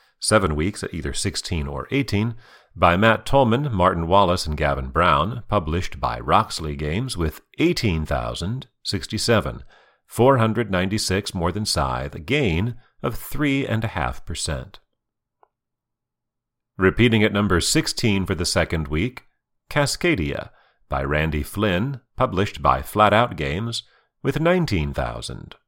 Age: 40-59